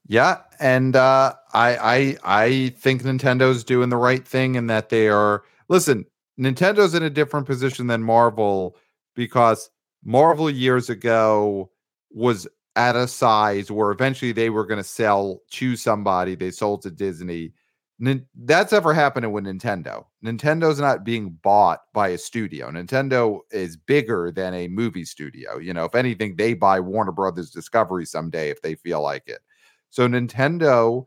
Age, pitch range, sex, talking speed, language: 40-59, 95-125 Hz, male, 160 wpm, English